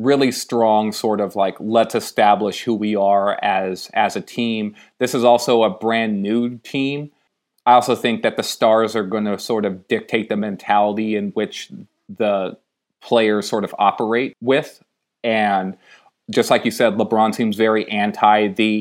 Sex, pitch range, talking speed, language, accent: male, 110-125 Hz, 170 wpm, English, American